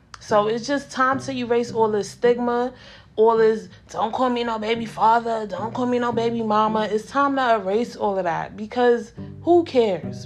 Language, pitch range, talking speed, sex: English, 205-245 Hz, 195 wpm, female